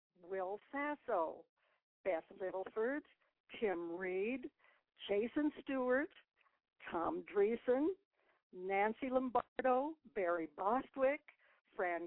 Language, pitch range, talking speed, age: English, 180-265 Hz, 75 wpm, 60-79